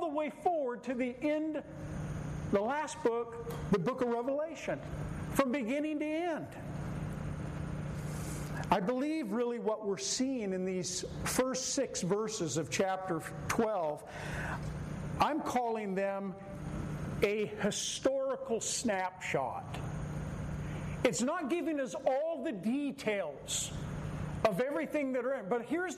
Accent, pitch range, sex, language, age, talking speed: American, 165-275 Hz, male, English, 50-69, 115 wpm